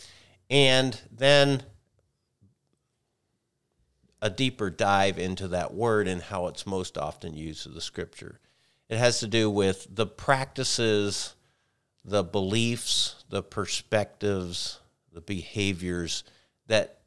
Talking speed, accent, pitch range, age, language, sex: 110 wpm, American, 85-110 Hz, 50-69, English, male